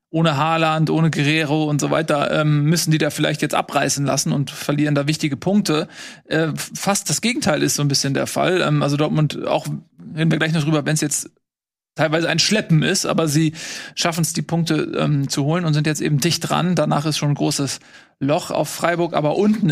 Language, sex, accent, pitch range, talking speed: German, male, German, 145-170 Hz, 215 wpm